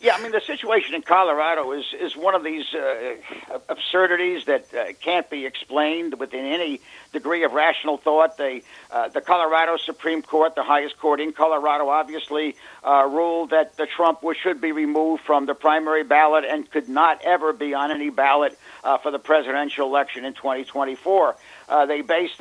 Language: English